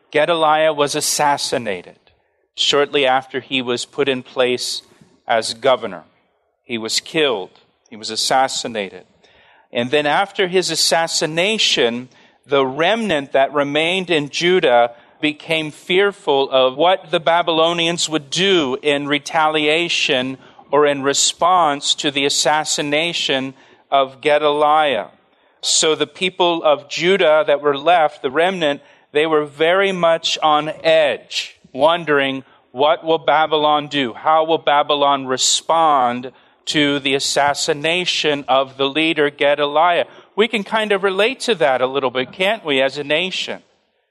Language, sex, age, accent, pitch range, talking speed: English, male, 40-59, American, 140-170 Hz, 130 wpm